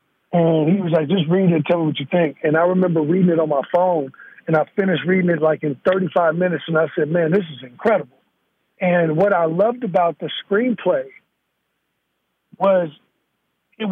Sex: male